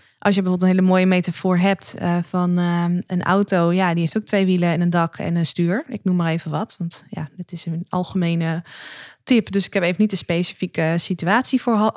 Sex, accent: female, Dutch